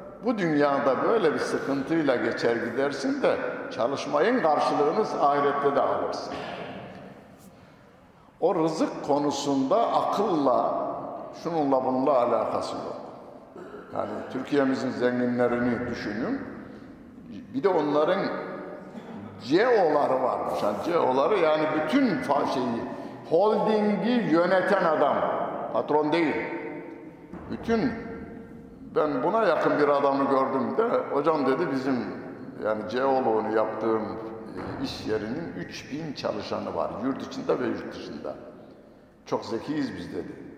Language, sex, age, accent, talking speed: Turkish, male, 60-79, native, 100 wpm